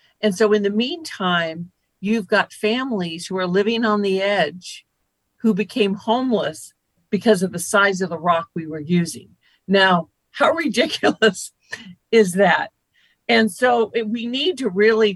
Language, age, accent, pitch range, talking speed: English, 50-69, American, 180-215 Hz, 150 wpm